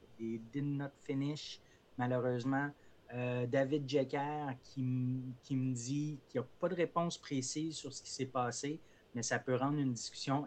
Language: French